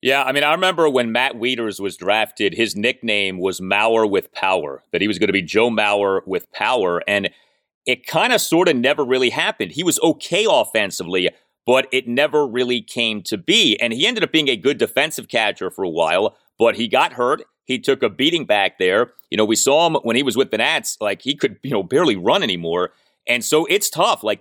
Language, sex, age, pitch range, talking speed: English, male, 30-49, 115-195 Hz, 225 wpm